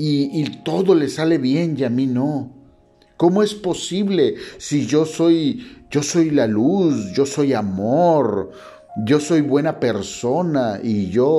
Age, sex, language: 50-69, male, Spanish